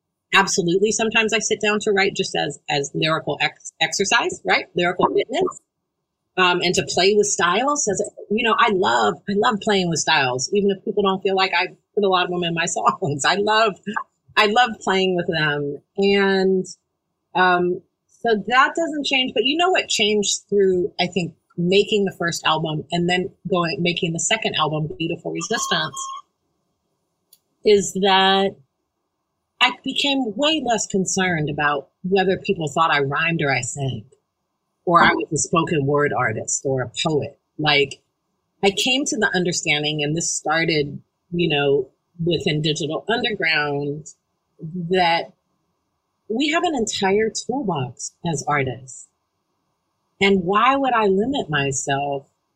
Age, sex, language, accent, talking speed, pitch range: 30-49, female, English, American, 155 wpm, 160-210 Hz